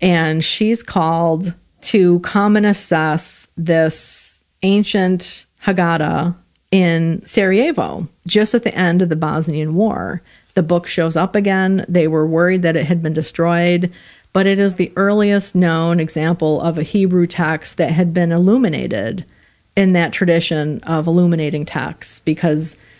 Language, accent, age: English, American, 40-59